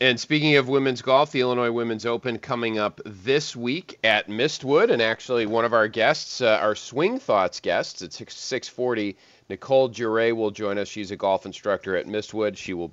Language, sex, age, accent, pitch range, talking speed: English, male, 30-49, American, 100-130 Hz, 190 wpm